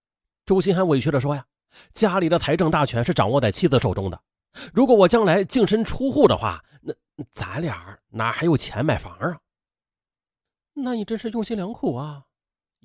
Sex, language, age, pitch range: male, Chinese, 30-49, 135-215 Hz